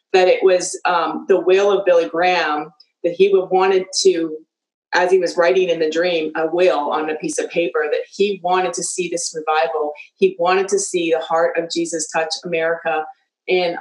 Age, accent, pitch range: 30-49, American, 165-210 Hz